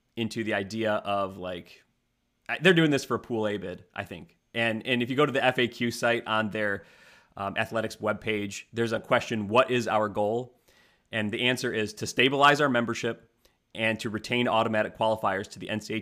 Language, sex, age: English, male, 30-49